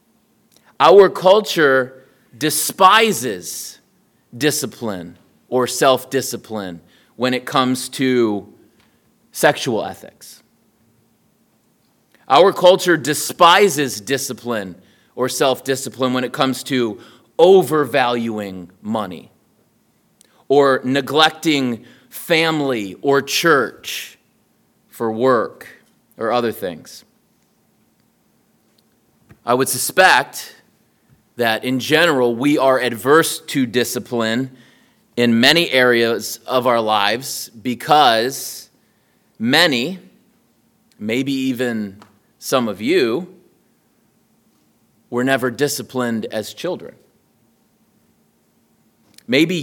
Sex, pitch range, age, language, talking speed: male, 115-140 Hz, 30-49, English, 75 wpm